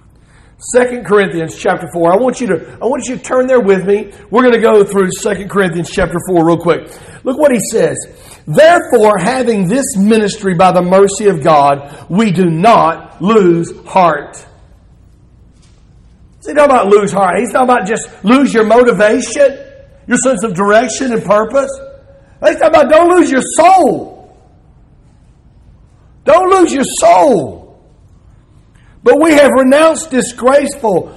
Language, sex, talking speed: English, male, 145 wpm